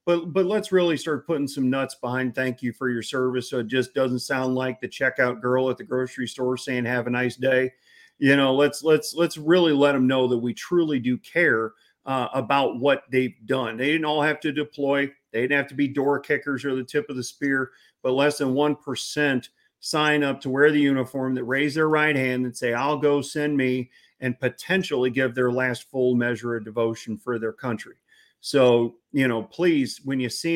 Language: English